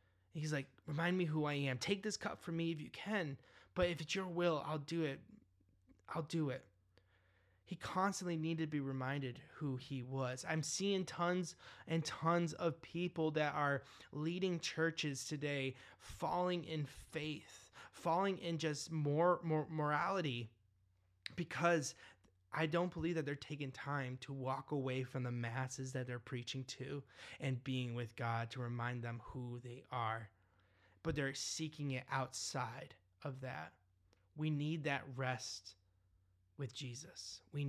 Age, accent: 20-39, American